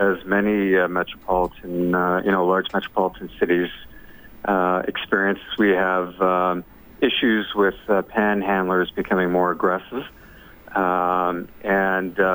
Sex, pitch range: male, 90-100 Hz